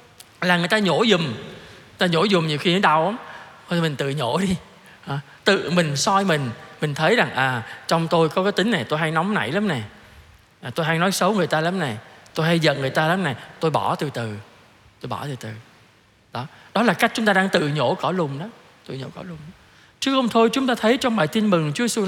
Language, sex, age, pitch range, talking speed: Vietnamese, male, 20-39, 150-220 Hz, 245 wpm